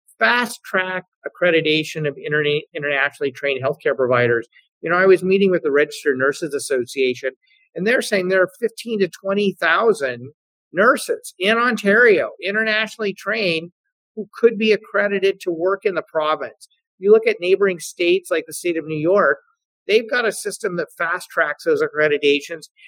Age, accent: 50-69, American